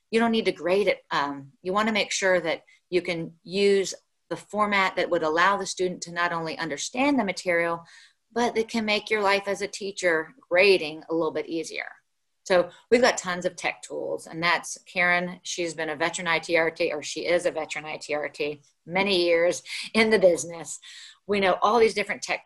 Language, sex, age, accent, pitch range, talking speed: English, female, 30-49, American, 165-205 Hz, 200 wpm